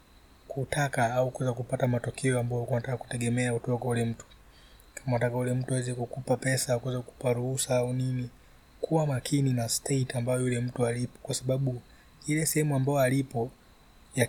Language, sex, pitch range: Swahili, male, 120-135 Hz